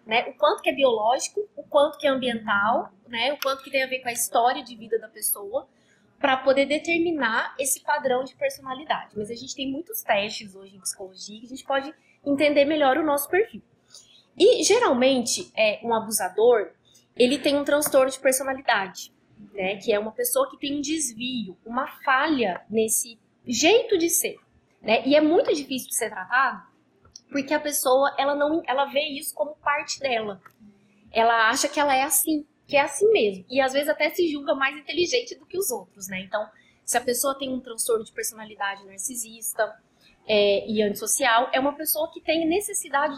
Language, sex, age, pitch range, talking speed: Portuguese, female, 20-39, 230-300 Hz, 190 wpm